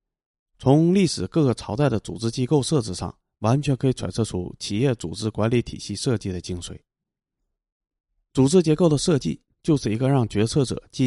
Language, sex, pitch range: Chinese, male, 100-130 Hz